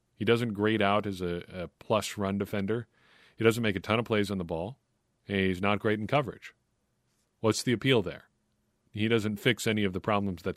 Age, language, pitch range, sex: 40-59, English, 100-120 Hz, male